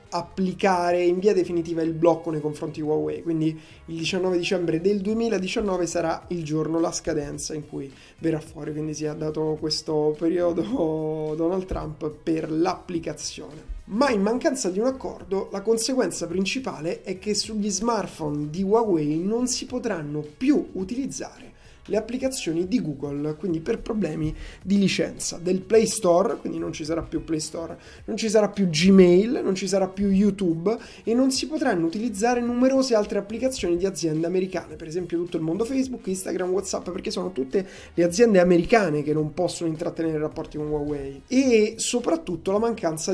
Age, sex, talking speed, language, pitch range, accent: 20-39, male, 165 wpm, Italian, 160-210 Hz, native